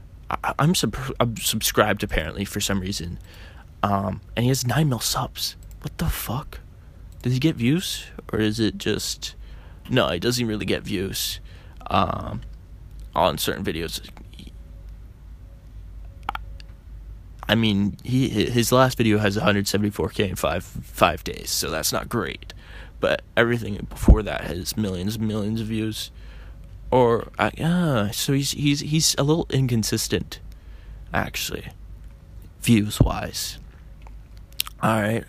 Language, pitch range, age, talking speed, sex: English, 95-120 Hz, 20-39, 130 wpm, male